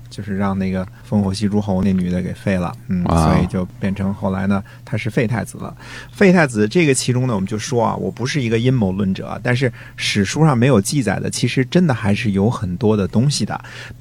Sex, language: male, Chinese